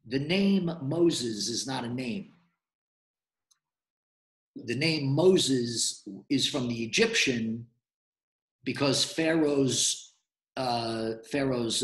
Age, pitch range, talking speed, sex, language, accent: 50-69, 125-160 Hz, 90 wpm, male, English, American